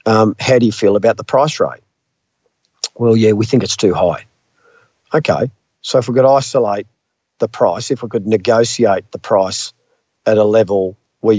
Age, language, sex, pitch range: 50-69, English, male, 105-125 Hz